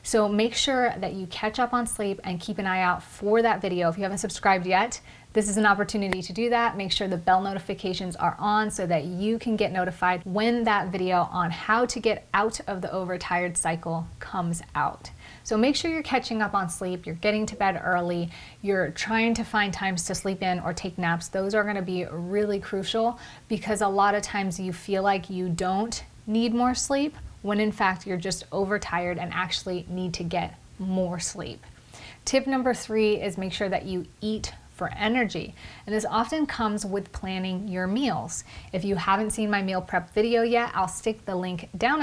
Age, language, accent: 30-49, English, American